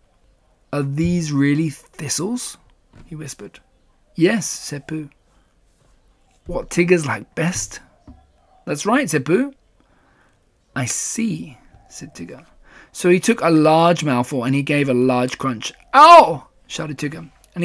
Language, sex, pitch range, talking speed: English, male, 135-180 Hz, 125 wpm